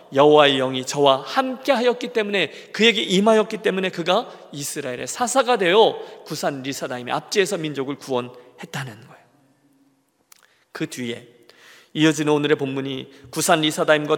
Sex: male